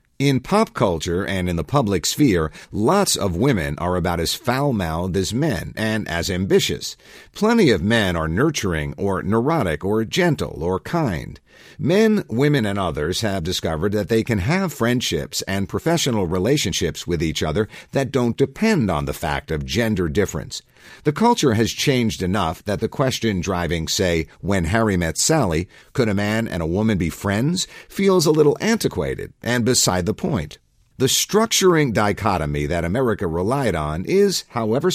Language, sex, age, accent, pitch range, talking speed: English, male, 50-69, American, 90-130 Hz, 165 wpm